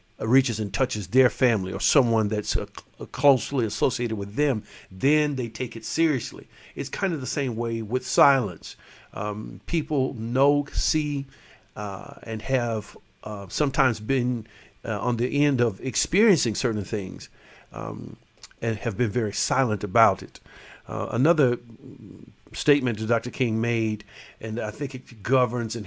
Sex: male